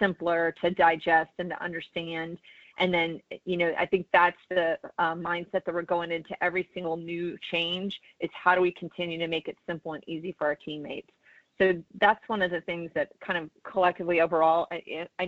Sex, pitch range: female, 165-180 Hz